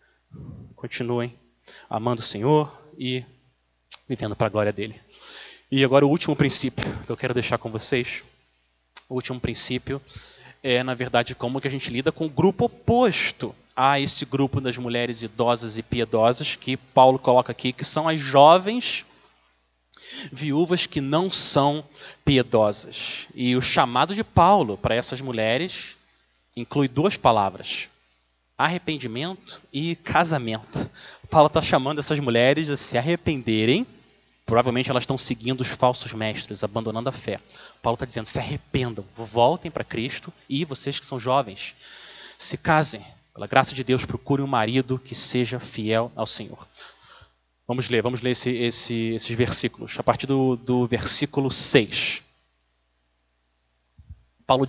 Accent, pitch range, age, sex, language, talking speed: Brazilian, 115-140 Hz, 20-39, male, Portuguese, 145 wpm